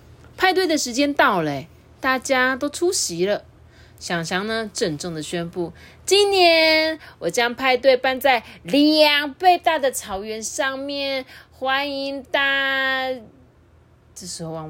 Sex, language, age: female, Chinese, 30-49